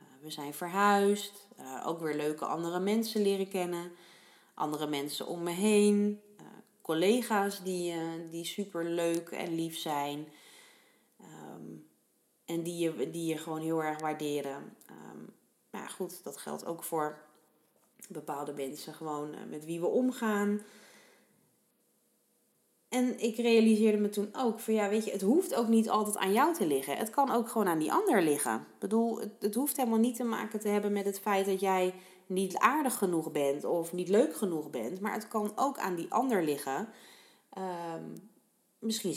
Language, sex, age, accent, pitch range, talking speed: Dutch, female, 30-49, Dutch, 165-215 Hz, 160 wpm